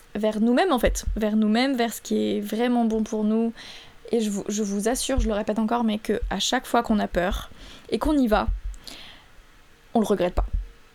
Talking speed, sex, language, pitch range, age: 210 wpm, female, French, 210-235 Hz, 20-39